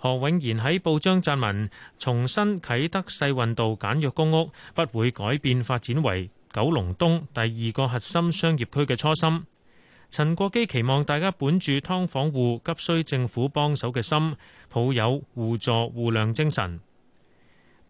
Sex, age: male, 30-49